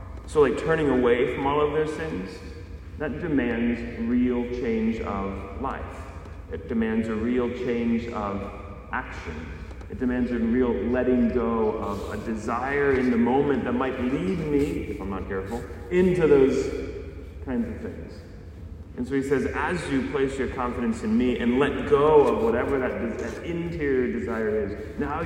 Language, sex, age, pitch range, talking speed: English, male, 30-49, 95-120 Hz, 165 wpm